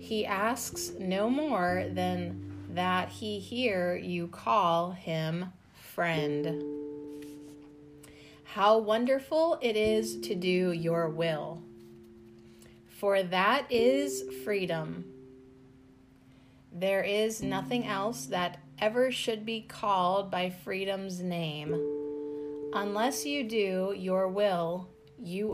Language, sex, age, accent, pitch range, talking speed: English, female, 30-49, American, 145-205 Hz, 100 wpm